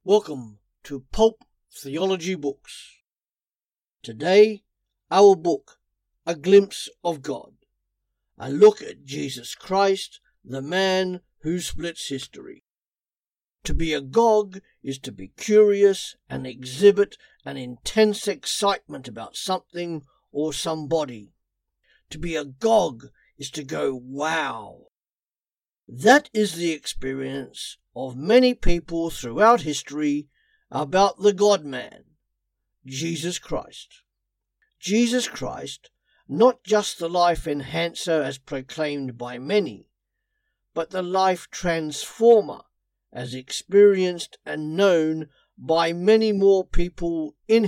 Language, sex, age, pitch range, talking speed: English, male, 60-79, 140-200 Hz, 105 wpm